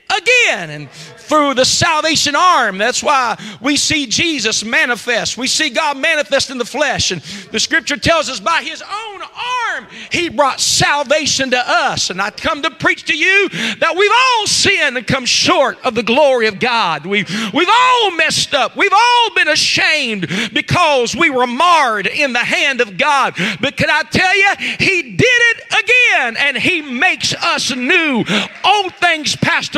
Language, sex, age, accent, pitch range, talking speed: English, male, 50-69, American, 250-375 Hz, 175 wpm